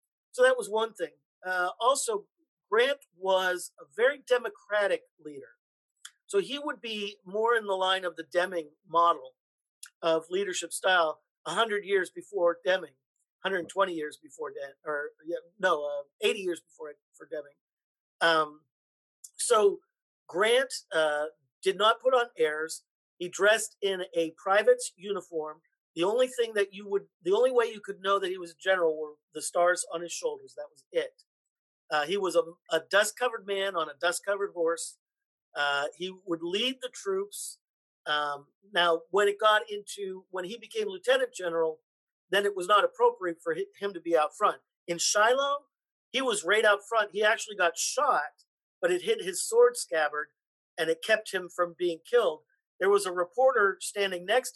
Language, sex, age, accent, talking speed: English, male, 50-69, American, 170 wpm